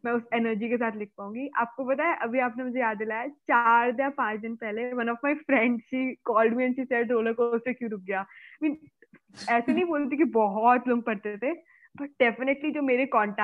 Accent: native